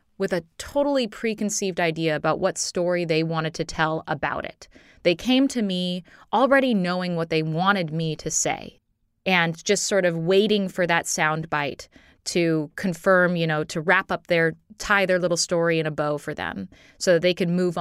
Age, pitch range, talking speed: 20-39, 160-190 Hz, 190 wpm